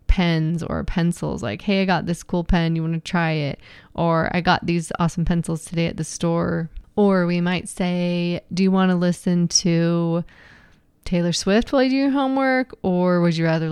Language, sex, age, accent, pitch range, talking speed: English, female, 20-39, American, 165-200 Hz, 200 wpm